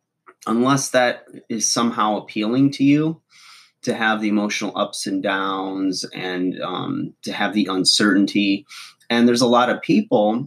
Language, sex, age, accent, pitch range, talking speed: English, male, 30-49, American, 95-120 Hz, 150 wpm